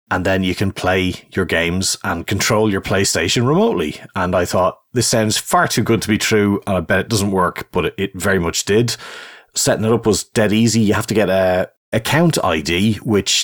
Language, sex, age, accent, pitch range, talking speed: English, male, 30-49, Irish, 90-115 Hz, 220 wpm